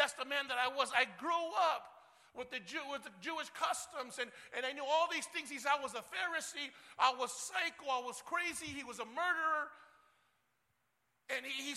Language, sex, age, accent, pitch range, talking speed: English, male, 50-69, American, 280-325 Hz, 205 wpm